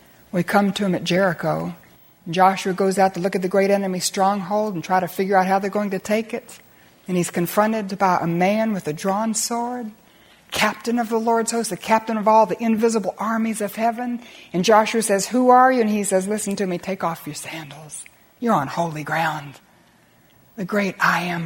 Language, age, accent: English, 60-79, American